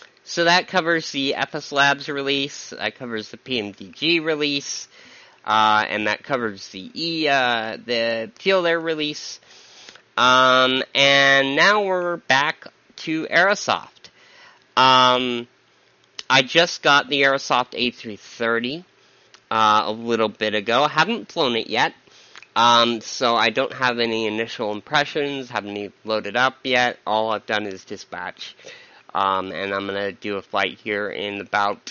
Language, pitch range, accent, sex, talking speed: English, 110-150 Hz, American, male, 145 wpm